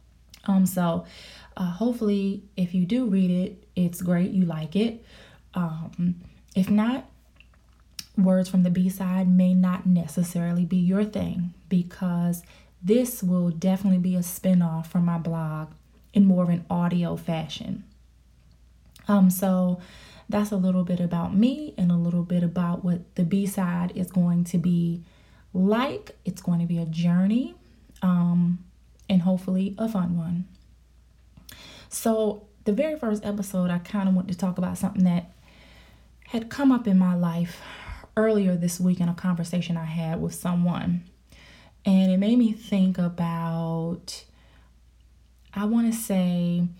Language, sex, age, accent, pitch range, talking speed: English, female, 20-39, American, 175-195 Hz, 150 wpm